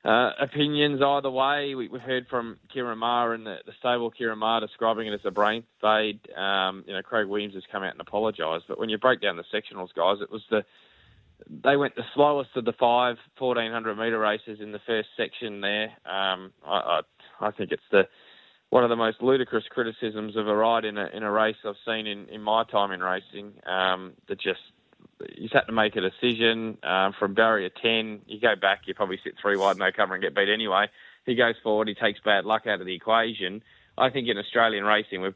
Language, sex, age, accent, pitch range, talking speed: English, male, 20-39, Australian, 105-120 Hz, 220 wpm